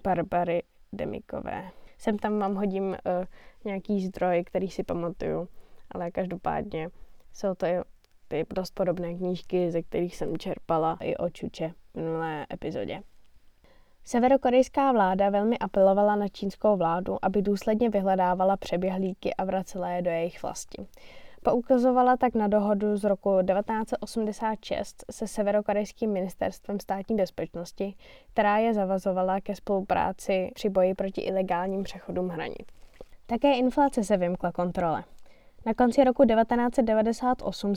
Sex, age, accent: female, 10-29, native